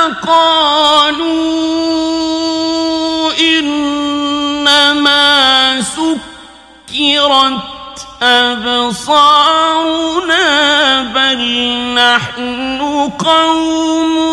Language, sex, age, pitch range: Persian, male, 50-69, 245-295 Hz